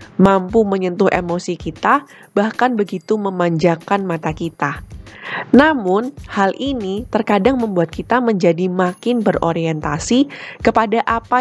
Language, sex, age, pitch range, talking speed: Indonesian, female, 20-39, 170-230 Hz, 105 wpm